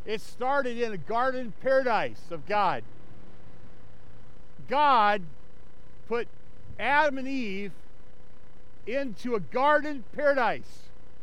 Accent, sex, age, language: American, male, 50-69, English